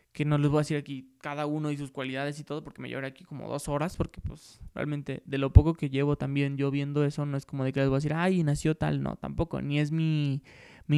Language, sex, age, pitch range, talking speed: Spanish, male, 20-39, 140-165 Hz, 280 wpm